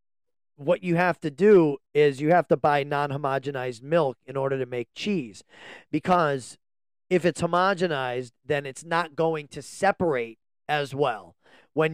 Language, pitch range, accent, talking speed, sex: English, 140-175 Hz, American, 150 wpm, male